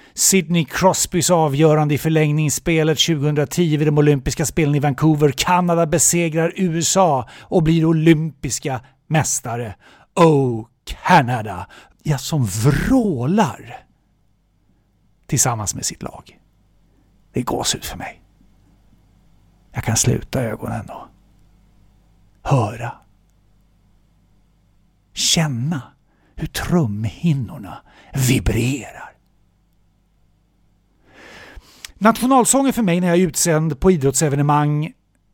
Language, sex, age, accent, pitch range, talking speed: English, male, 60-79, Swedish, 130-170 Hz, 90 wpm